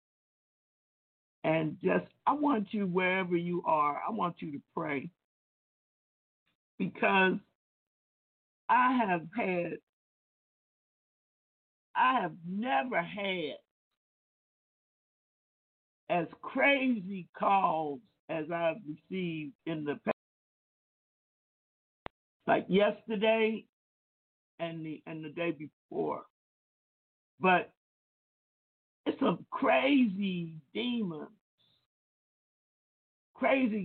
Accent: American